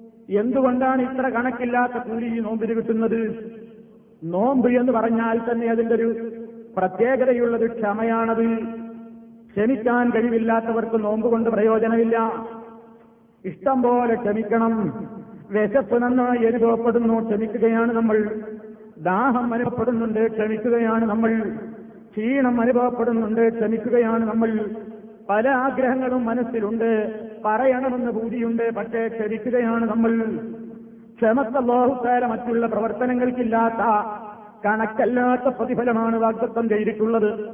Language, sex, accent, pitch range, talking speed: Malayalam, male, native, 220-240 Hz, 80 wpm